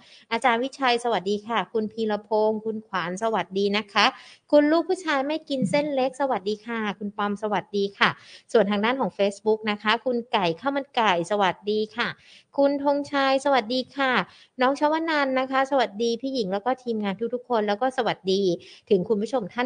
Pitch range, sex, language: 200-255 Hz, female, Thai